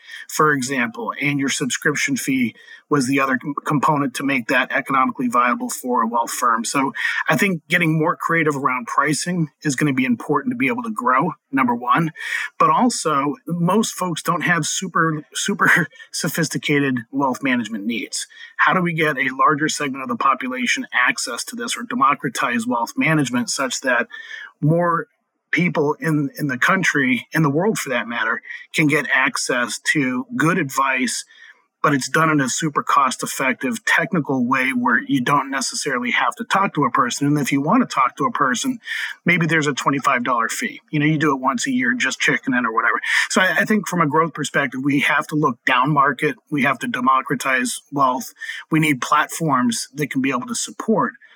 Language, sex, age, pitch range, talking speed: English, male, 30-49, 145-240 Hz, 190 wpm